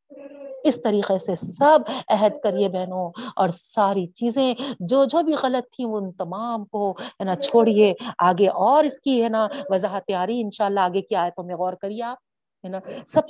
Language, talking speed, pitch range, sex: Urdu, 180 wpm, 205-280 Hz, female